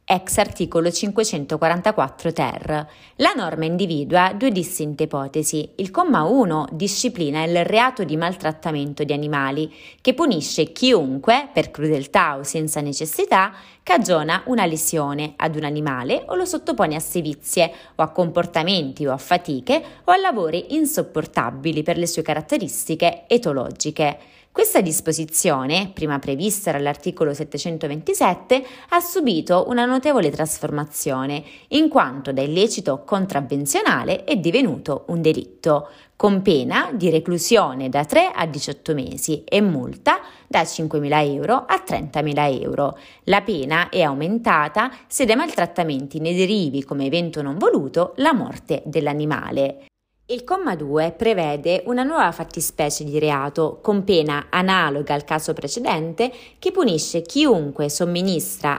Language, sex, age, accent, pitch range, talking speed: Italian, female, 20-39, native, 150-210 Hz, 130 wpm